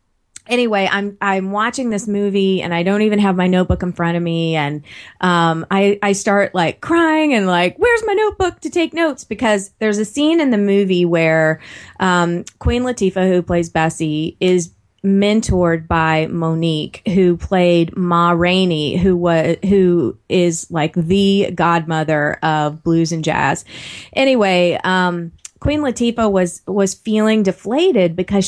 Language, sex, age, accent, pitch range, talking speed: English, female, 30-49, American, 175-235 Hz, 155 wpm